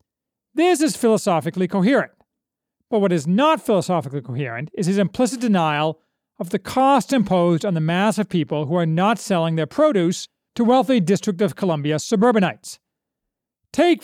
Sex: male